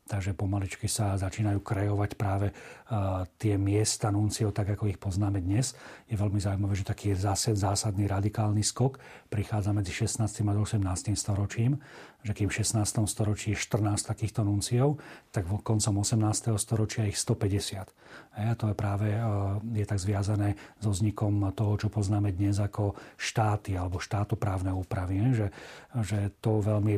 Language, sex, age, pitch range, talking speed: Slovak, male, 40-59, 100-110 Hz, 150 wpm